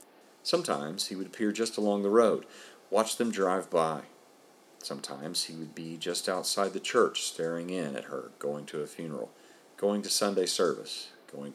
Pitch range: 75-105 Hz